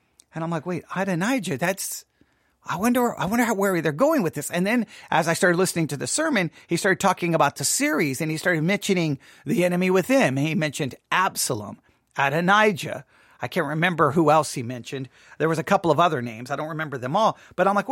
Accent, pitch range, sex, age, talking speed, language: American, 165-235 Hz, male, 40-59, 215 wpm, English